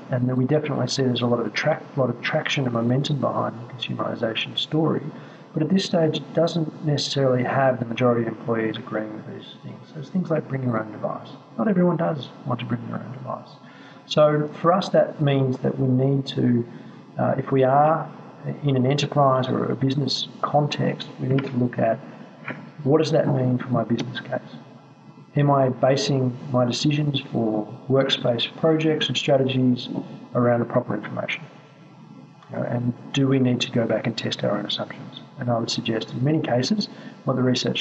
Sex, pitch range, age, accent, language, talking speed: male, 125-145 Hz, 40-59, Australian, English, 190 wpm